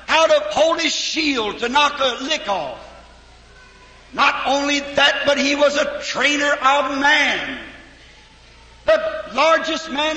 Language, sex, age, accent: English, male, 60-79, American